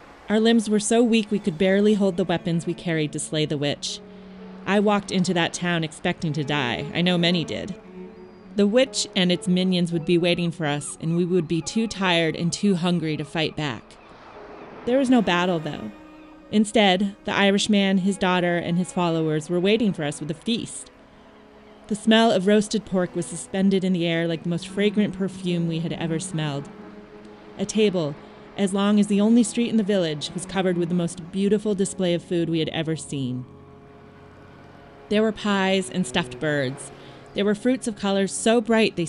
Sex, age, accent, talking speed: female, 30-49, American, 195 wpm